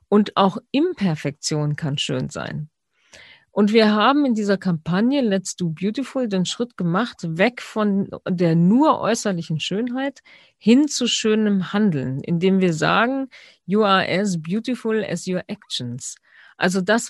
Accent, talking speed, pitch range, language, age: German, 140 wpm, 170-220 Hz, German, 50-69